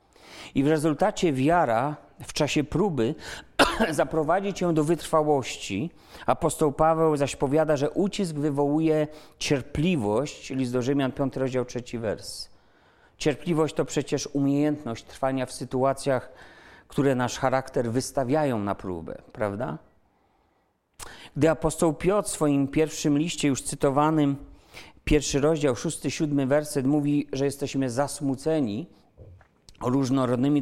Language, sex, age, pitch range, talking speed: Polish, male, 40-59, 135-155 Hz, 120 wpm